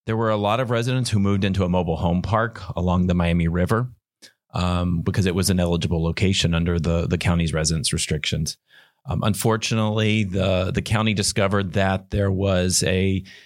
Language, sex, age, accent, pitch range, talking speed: English, male, 30-49, American, 95-110 Hz, 180 wpm